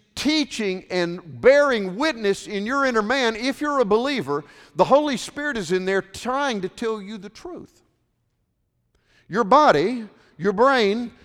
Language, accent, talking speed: English, American, 150 wpm